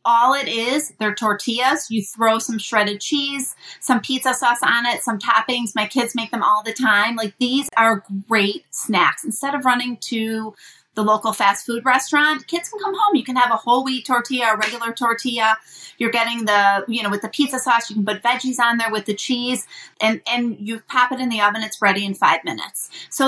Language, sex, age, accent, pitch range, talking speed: English, female, 30-49, American, 215-260 Hz, 215 wpm